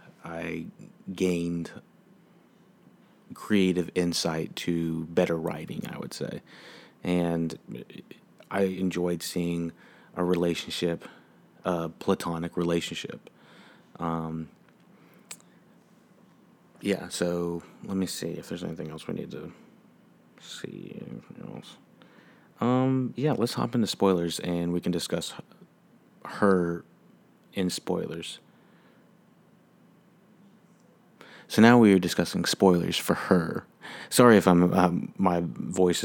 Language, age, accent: English, 30-49, American